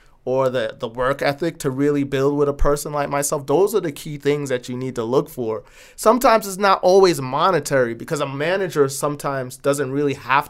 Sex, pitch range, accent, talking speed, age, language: male, 125-165 Hz, American, 205 wpm, 30-49, English